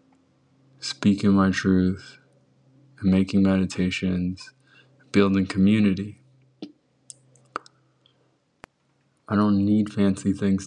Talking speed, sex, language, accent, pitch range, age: 75 wpm, male, English, American, 90-100 Hz, 20-39